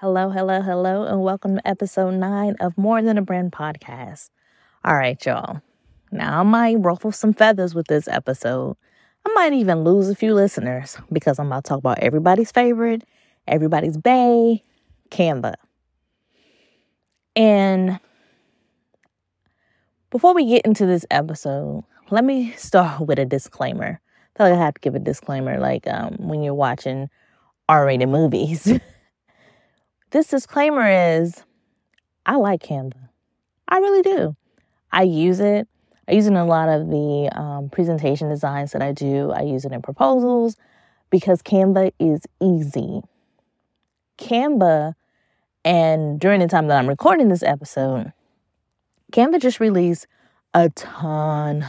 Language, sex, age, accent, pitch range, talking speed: English, female, 20-39, American, 150-215 Hz, 145 wpm